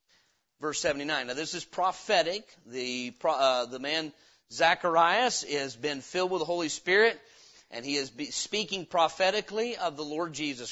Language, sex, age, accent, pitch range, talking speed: English, male, 40-59, American, 140-190 Hz, 150 wpm